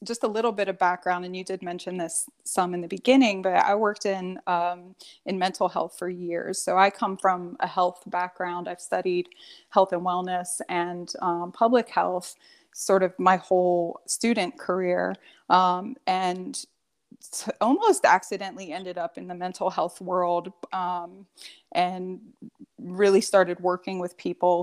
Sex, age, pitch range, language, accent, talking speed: female, 20-39, 185-235 Hz, English, American, 160 wpm